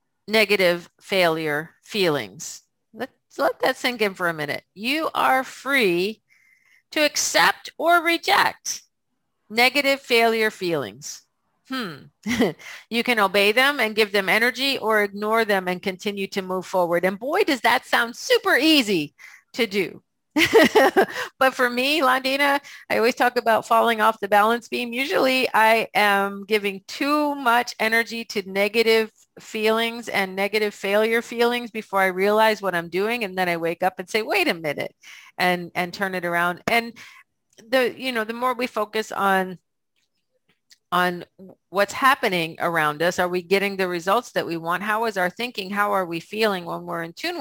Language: English